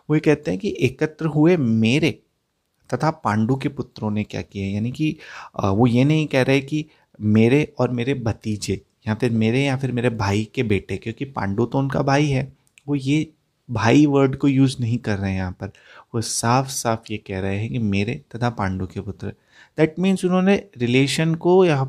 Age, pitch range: 30-49, 105-140 Hz